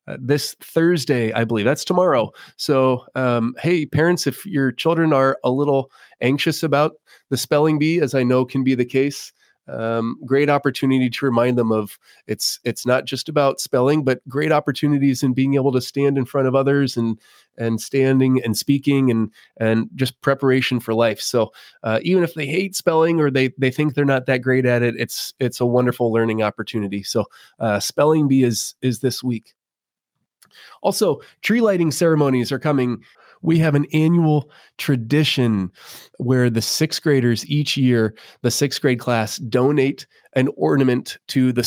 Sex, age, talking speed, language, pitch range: male, 20-39, 175 wpm, English, 125-145 Hz